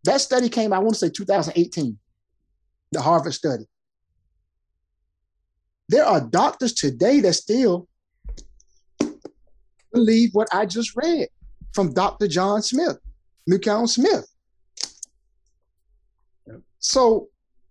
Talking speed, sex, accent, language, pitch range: 100 wpm, male, American, English, 140-220 Hz